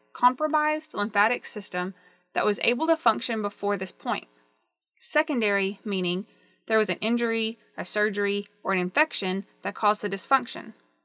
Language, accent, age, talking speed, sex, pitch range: English, American, 20-39, 140 wpm, female, 200-255 Hz